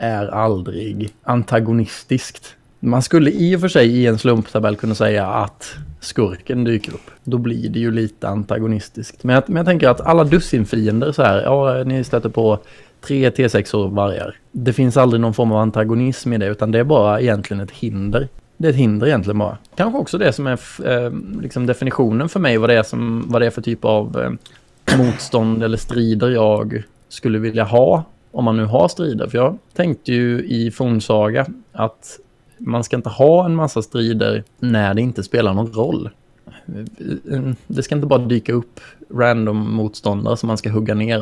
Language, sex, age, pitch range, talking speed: Swedish, male, 20-39, 110-130 Hz, 185 wpm